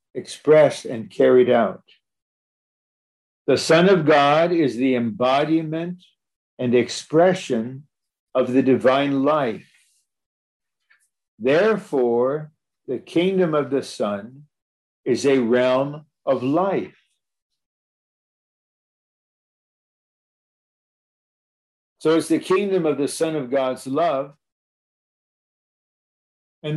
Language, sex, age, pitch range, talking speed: English, male, 50-69, 130-165 Hz, 85 wpm